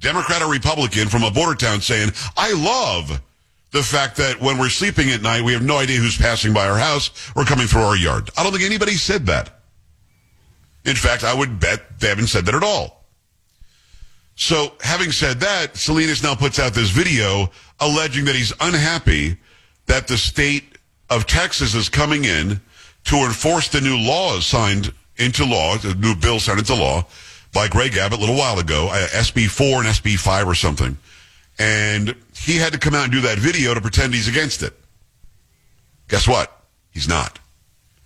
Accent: American